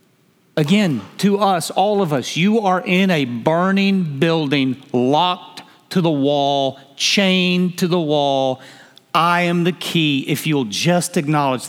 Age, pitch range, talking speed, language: 50-69, 160-200 Hz, 145 wpm, English